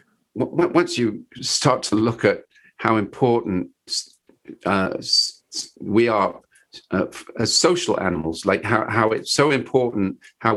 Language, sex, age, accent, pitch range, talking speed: English, male, 50-69, British, 105-140 Hz, 125 wpm